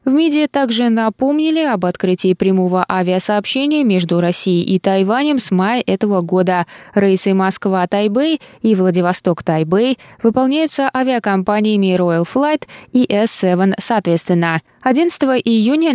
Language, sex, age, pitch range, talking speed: Russian, female, 20-39, 185-255 Hz, 110 wpm